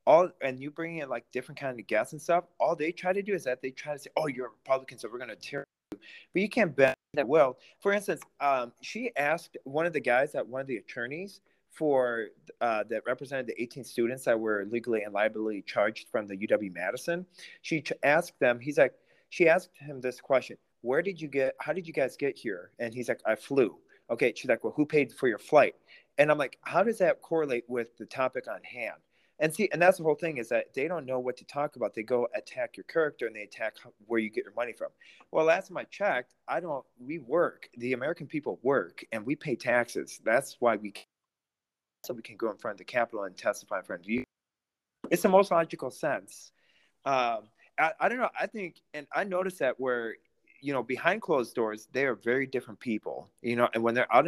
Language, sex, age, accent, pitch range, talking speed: English, male, 40-59, American, 125-170 Hz, 240 wpm